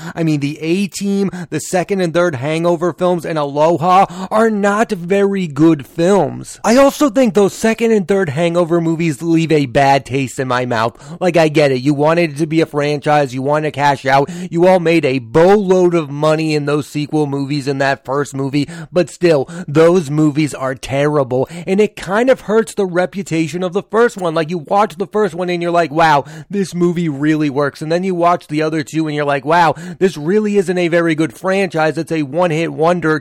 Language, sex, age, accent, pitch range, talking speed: English, male, 30-49, American, 150-190 Hz, 210 wpm